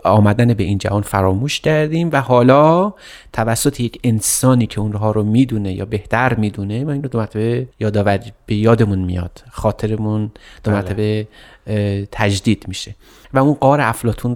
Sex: male